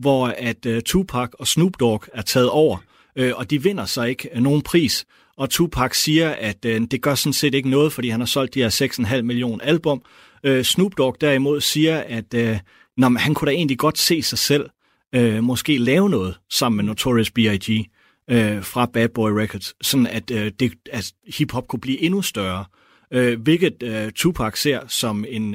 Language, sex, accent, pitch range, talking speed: Danish, male, native, 110-140 Hz, 195 wpm